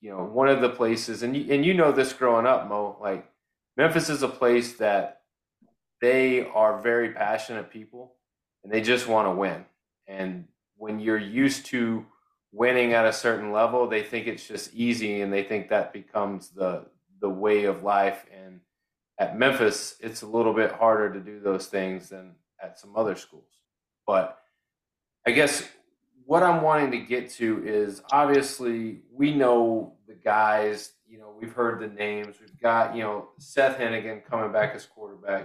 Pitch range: 105-125 Hz